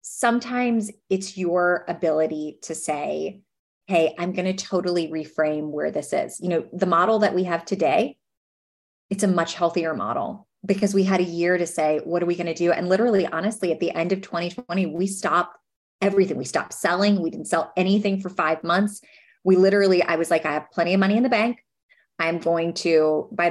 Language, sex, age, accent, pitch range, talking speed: English, female, 30-49, American, 165-195 Hz, 200 wpm